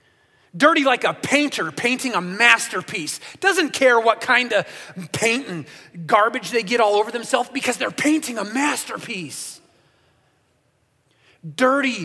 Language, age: English, 30-49